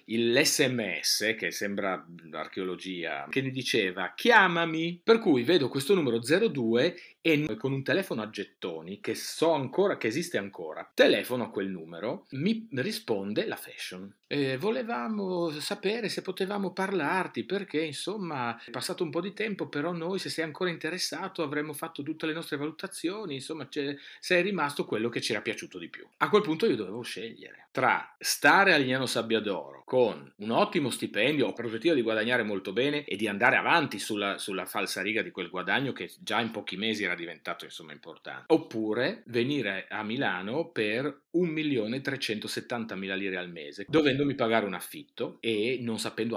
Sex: male